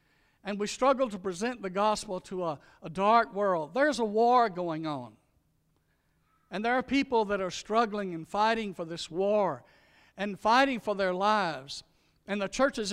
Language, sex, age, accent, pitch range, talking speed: English, male, 60-79, American, 145-200 Hz, 170 wpm